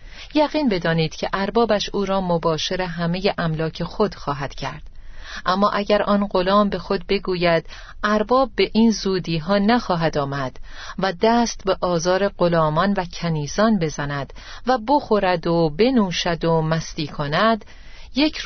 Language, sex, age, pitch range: Persian, female, 40-59, 170-215 Hz